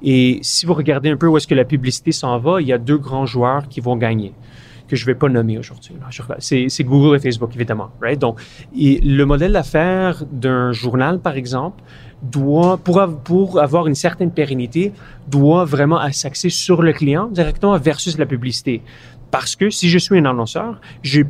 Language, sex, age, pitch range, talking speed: French, male, 30-49, 130-160 Hz, 205 wpm